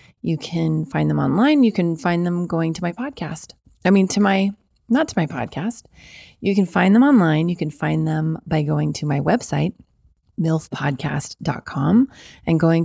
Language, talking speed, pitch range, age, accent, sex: English, 175 wpm, 150-175 Hz, 30-49, American, female